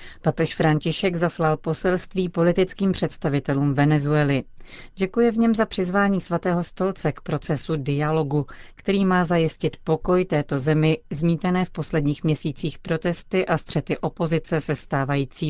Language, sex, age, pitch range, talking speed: Czech, female, 40-59, 145-175 Hz, 130 wpm